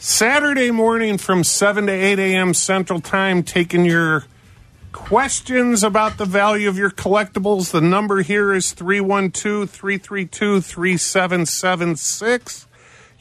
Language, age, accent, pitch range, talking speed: English, 40-59, American, 135-195 Hz, 105 wpm